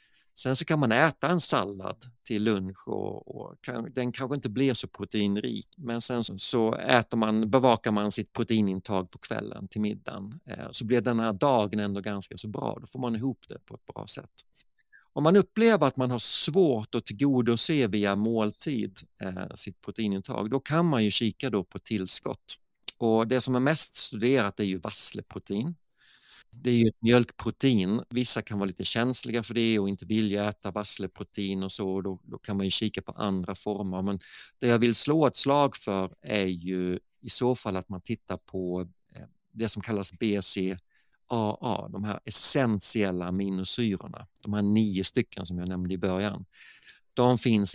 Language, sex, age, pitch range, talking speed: Swedish, male, 50-69, 100-125 Hz, 175 wpm